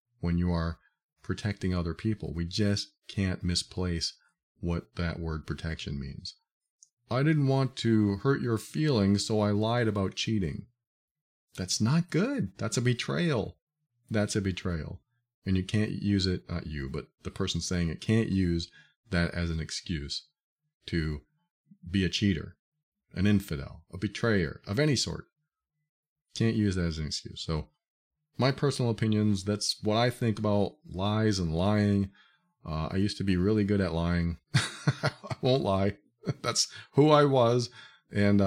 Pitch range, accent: 85-120 Hz, American